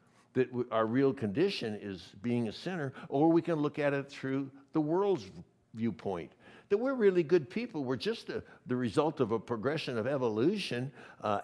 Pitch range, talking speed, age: 125-175 Hz, 175 wpm, 60-79